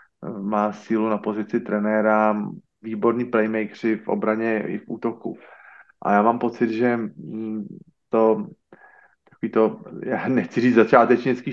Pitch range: 110-125 Hz